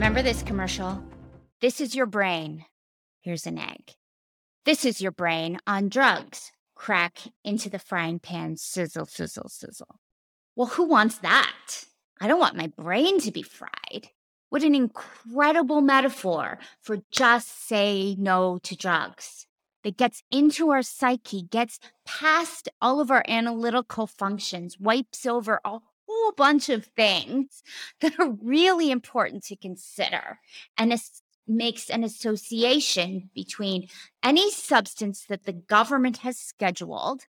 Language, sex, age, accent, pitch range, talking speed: English, female, 30-49, American, 190-255 Hz, 135 wpm